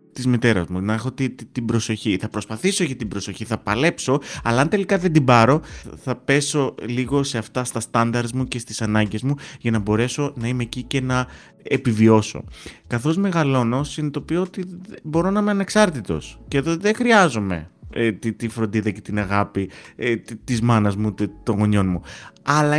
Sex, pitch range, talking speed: male, 110-145 Hz, 170 wpm